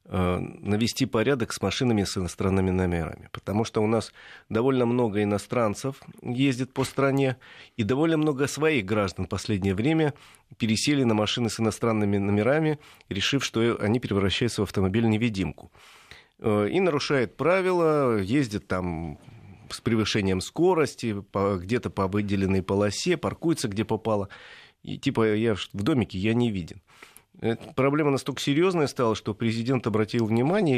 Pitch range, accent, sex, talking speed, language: 100-135 Hz, native, male, 135 wpm, Russian